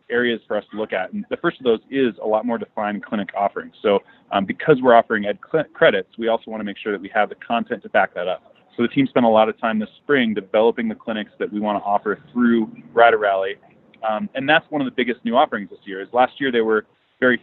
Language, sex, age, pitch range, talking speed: English, male, 30-49, 105-125 Hz, 270 wpm